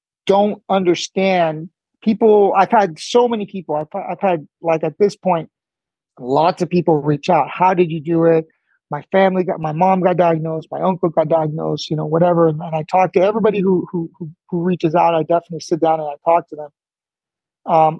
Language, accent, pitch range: English, American, 160-195 Hz